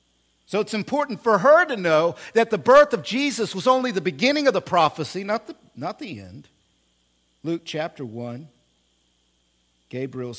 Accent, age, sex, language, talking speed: American, 50-69, male, English, 155 wpm